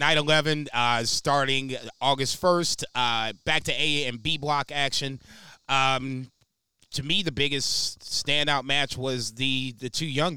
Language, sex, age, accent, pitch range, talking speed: English, male, 30-49, American, 125-145 Hz, 150 wpm